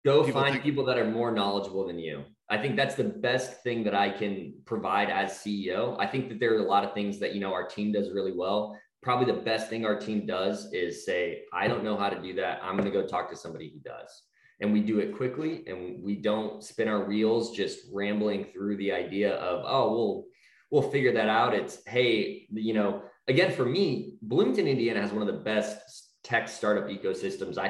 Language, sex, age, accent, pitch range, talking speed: English, male, 20-39, American, 100-115 Hz, 225 wpm